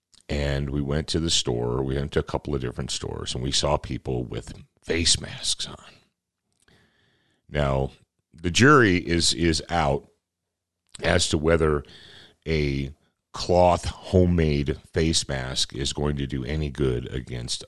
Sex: male